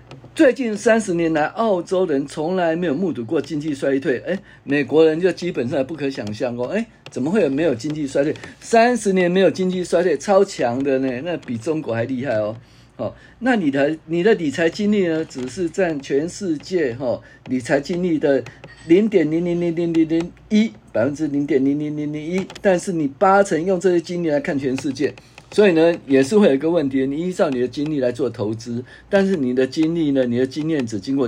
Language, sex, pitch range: Chinese, male, 130-185 Hz